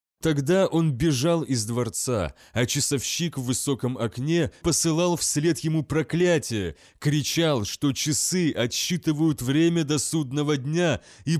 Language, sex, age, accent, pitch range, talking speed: Russian, male, 30-49, native, 115-160 Hz, 120 wpm